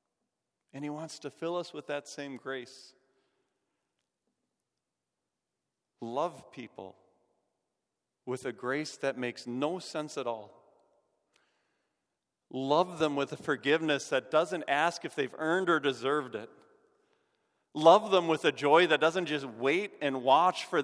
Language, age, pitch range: English, 40-59, 135-180 Hz